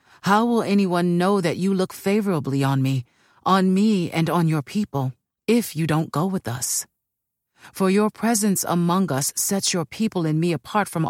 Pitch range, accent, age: 140-195 Hz, American, 40-59